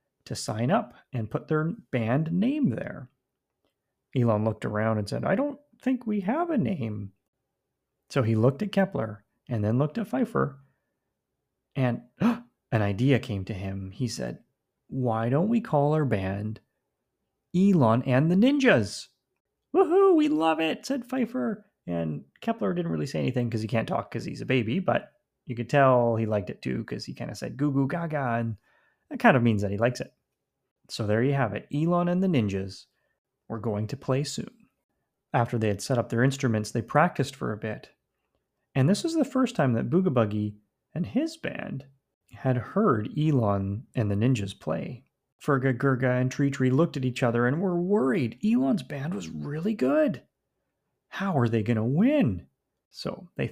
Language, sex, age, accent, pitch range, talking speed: English, male, 30-49, American, 115-175 Hz, 185 wpm